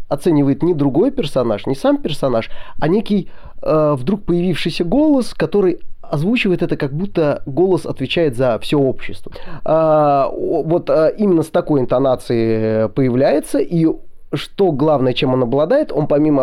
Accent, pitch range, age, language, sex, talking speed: native, 125-180 Hz, 20-39, Russian, male, 135 wpm